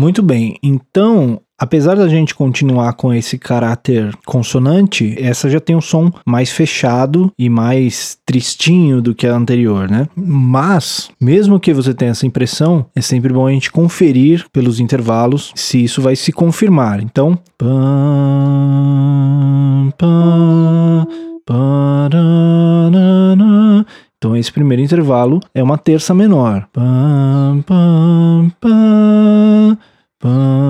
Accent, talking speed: Brazilian, 110 wpm